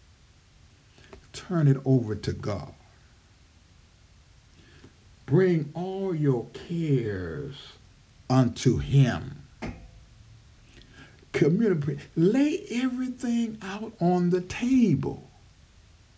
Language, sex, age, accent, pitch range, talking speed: English, male, 60-79, American, 100-145 Hz, 65 wpm